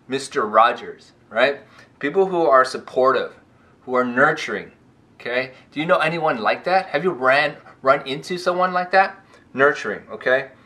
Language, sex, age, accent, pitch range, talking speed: English, male, 20-39, American, 115-160 Hz, 150 wpm